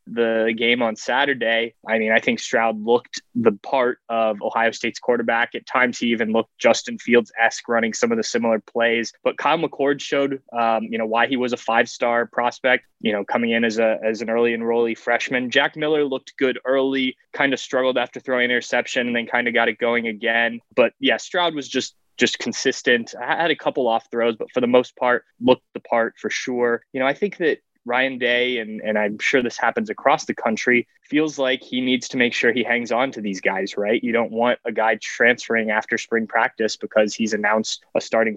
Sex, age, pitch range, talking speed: male, 20-39, 110-130 Hz, 215 wpm